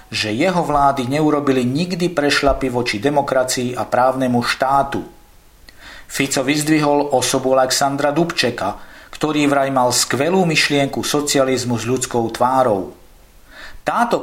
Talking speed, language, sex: 105 wpm, Slovak, male